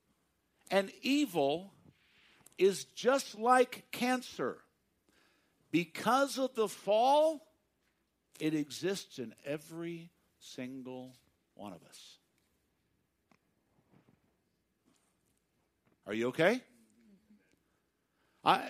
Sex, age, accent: male, 60-79, American